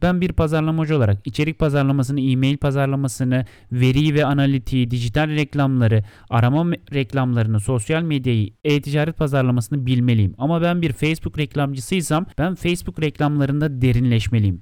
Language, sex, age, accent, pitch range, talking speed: Turkish, male, 30-49, native, 125-155 Hz, 120 wpm